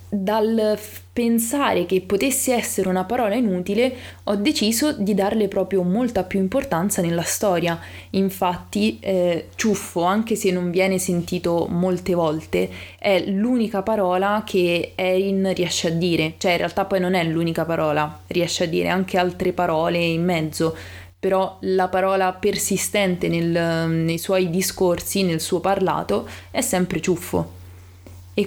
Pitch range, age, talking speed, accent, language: 170-205 Hz, 20-39, 140 wpm, native, Italian